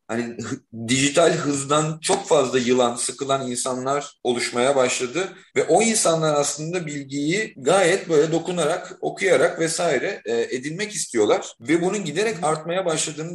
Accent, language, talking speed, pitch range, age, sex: native, Turkish, 120 wpm, 130-185 Hz, 40-59, male